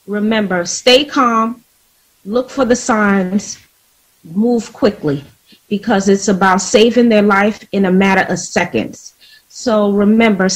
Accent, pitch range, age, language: American, 205-250 Hz, 30-49, English